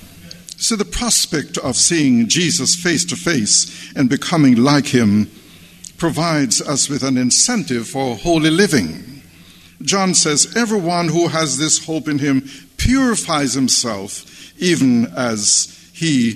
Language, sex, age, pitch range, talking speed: English, male, 60-79, 125-175 Hz, 130 wpm